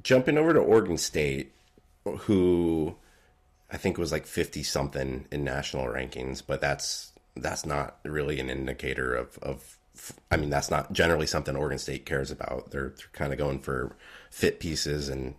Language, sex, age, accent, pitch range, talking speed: English, male, 30-49, American, 70-90 Hz, 170 wpm